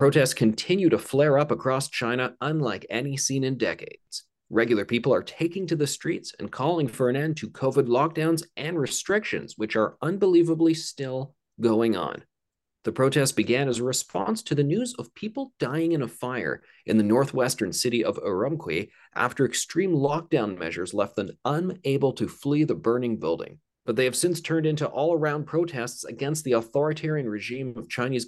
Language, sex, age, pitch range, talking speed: English, male, 30-49, 115-160 Hz, 175 wpm